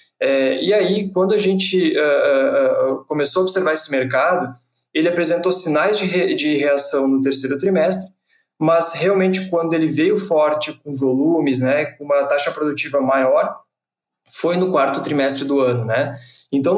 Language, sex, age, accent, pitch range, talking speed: Portuguese, male, 20-39, Brazilian, 135-170 Hz, 160 wpm